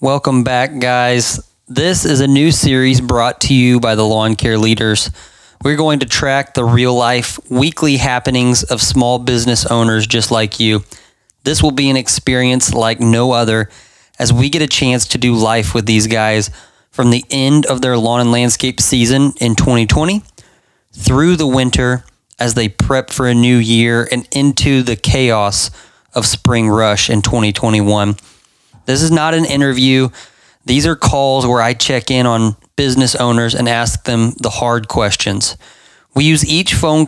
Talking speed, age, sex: 170 wpm, 20-39, male